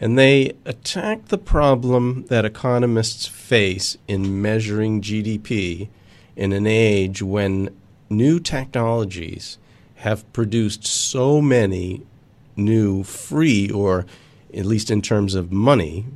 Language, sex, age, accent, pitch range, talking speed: English, male, 40-59, American, 100-125 Hz, 110 wpm